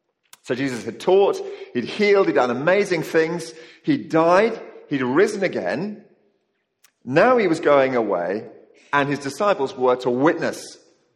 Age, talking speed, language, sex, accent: 40-59, 135 wpm, English, male, British